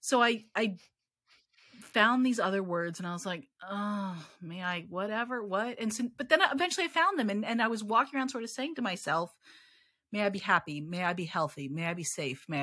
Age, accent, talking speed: 40-59, American, 230 wpm